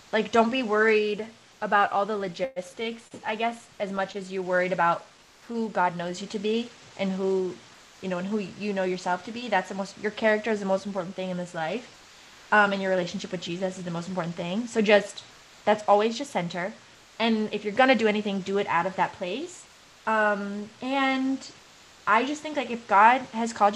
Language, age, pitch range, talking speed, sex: English, 20-39, 190-230 Hz, 215 wpm, female